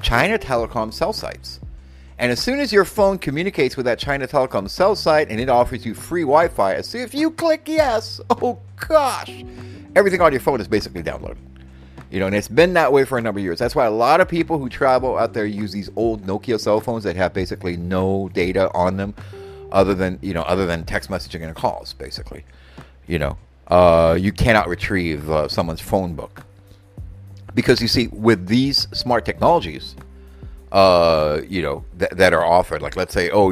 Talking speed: 200 wpm